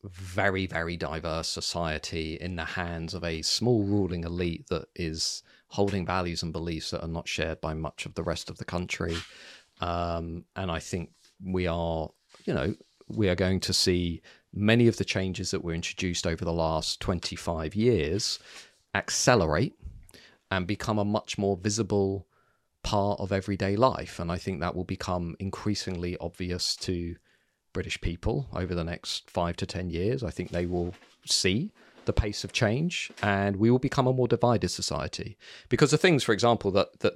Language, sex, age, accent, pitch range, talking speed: English, male, 40-59, British, 85-100 Hz, 175 wpm